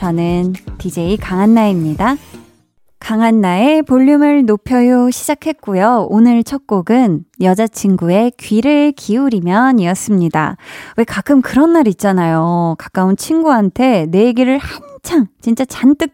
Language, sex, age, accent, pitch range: Korean, female, 20-39, native, 185-255 Hz